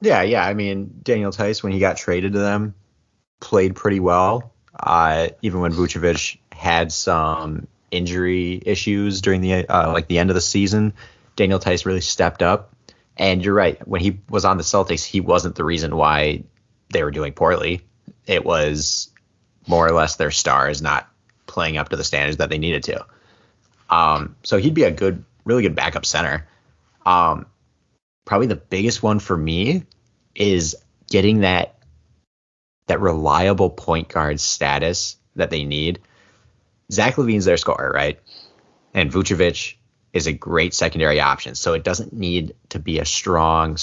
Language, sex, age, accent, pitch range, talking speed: English, male, 30-49, American, 80-100 Hz, 165 wpm